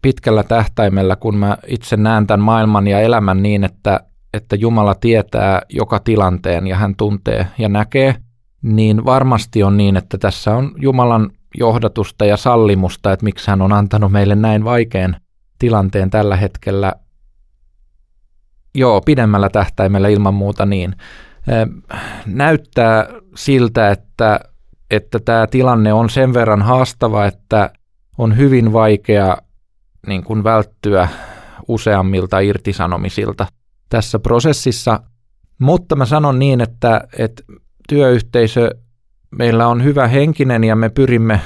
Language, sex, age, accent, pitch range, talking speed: Finnish, male, 20-39, native, 100-120 Hz, 125 wpm